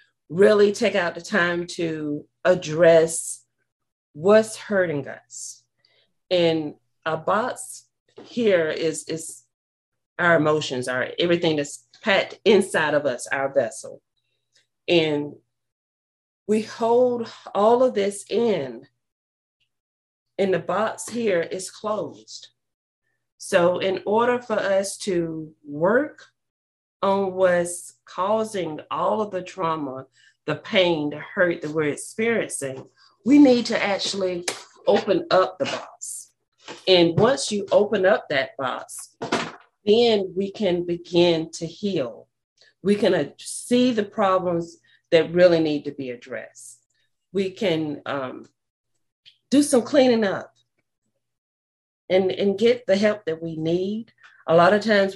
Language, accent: English, American